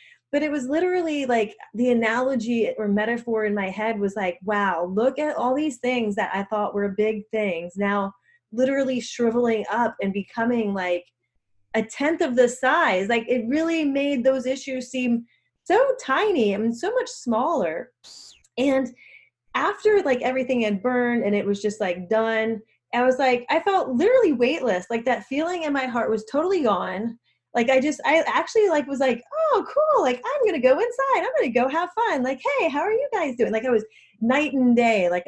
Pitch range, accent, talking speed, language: 205-275 Hz, American, 195 wpm, English